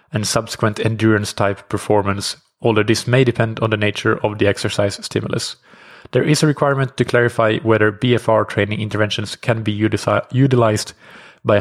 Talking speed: 155 wpm